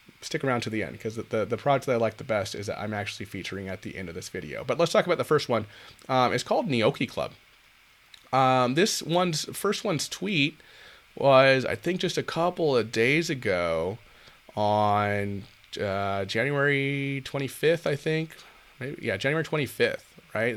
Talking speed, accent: 185 wpm, American